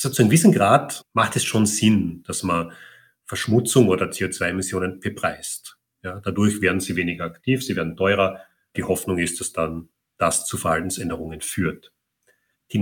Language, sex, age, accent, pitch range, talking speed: German, male, 40-59, German, 90-120 Hz, 160 wpm